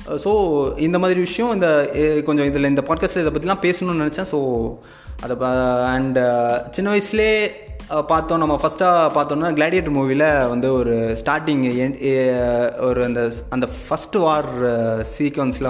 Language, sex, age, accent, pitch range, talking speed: Tamil, male, 20-39, native, 125-155 Hz, 125 wpm